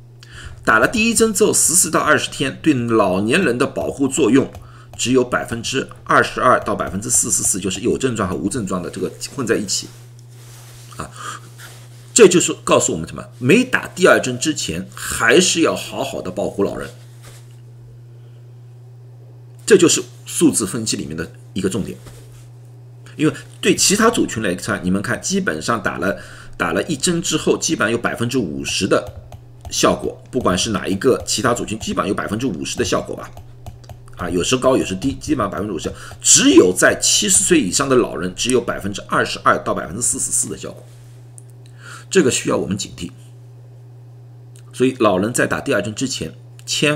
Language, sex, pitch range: Chinese, male, 110-120 Hz